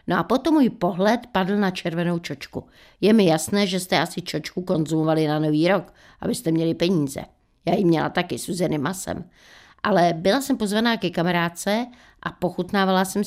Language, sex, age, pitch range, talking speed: Czech, female, 60-79, 170-200 Hz, 170 wpm